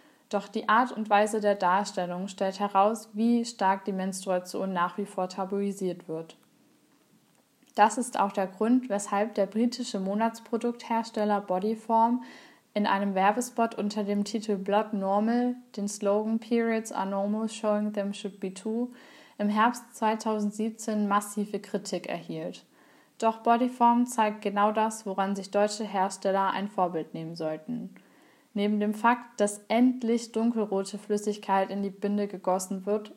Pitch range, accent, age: 195-230 Hz, German, 10-29